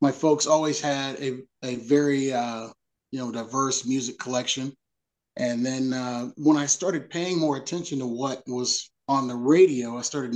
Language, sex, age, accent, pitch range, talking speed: English, male, 30-49, American, 125-145 Hz, 175 wpm